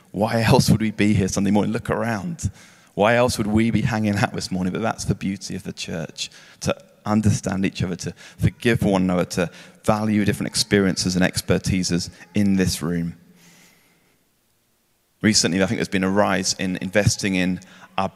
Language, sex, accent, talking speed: English, male, British, 180 wpm